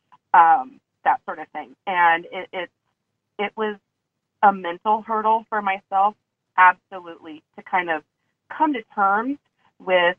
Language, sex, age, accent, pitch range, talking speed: English, female, 30-49, American, 170-215 Hz, 135 wpm